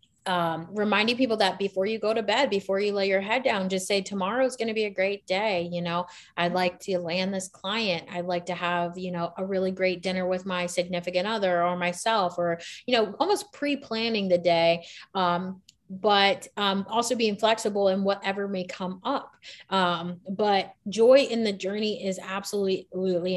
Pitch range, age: 180-215 Hz, 30-49